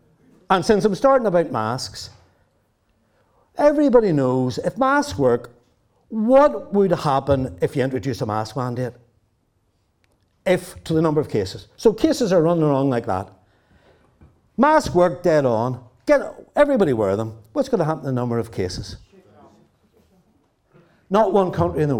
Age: 60-79